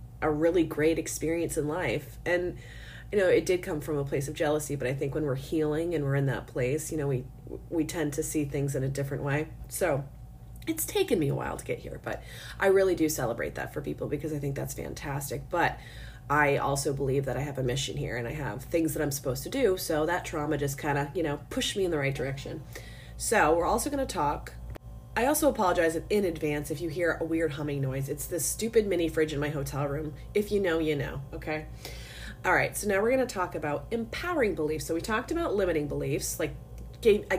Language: English